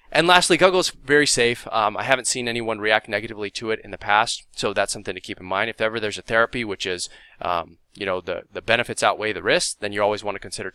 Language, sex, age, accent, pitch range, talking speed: English, male, 20-39, American, 105-130 Hz, 260 wpm